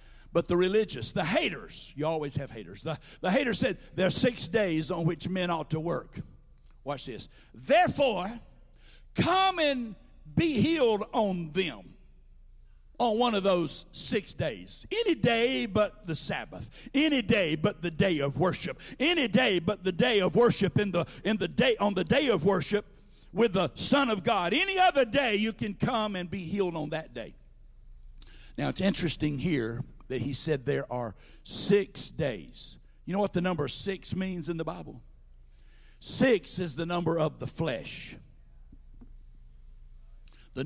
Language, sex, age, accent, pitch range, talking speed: English, male, 60-79, American, 135-200 Hz, 165 wpm